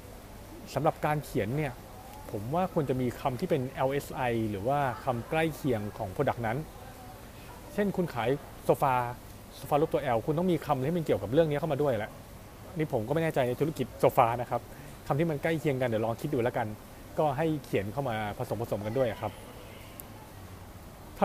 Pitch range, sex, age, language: 115-155 Hz, male, 20-39, Thai